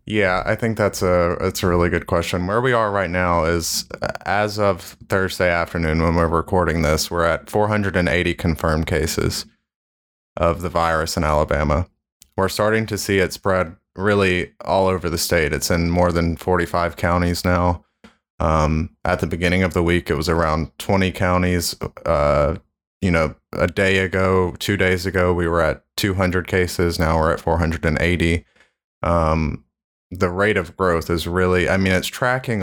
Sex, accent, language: male, American, English